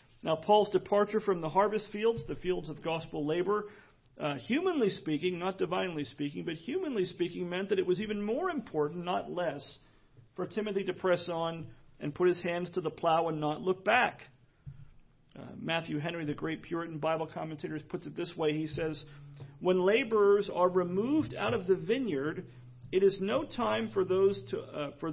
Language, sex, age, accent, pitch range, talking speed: English, male, 40-59, American, 150-195 Hz, 185 wpm